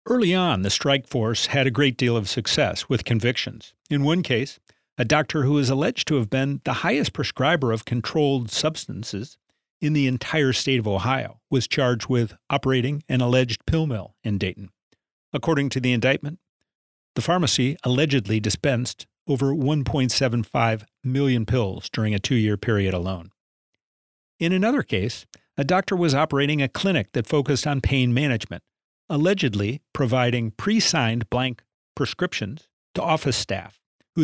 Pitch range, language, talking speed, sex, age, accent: 110-150 Hz, English, 150 wpm, male, 50-69, American